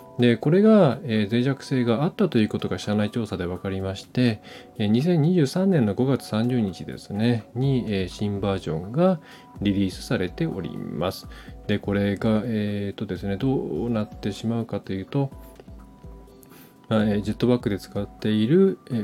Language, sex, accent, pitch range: Japanese, male, native, 100-130 Hz